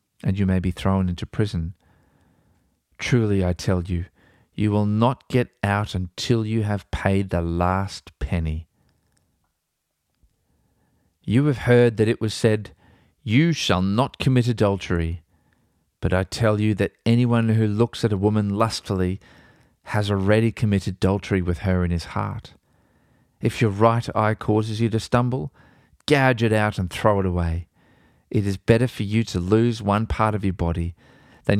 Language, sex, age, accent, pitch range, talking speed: English, male, 40-59, Australian, 90-115 Hz, 160 wpm